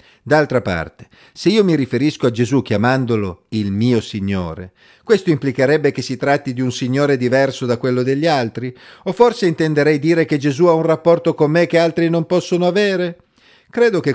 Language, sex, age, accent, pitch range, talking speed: Italian, male, 50-69, native, 110-155 Hz, 180 wpm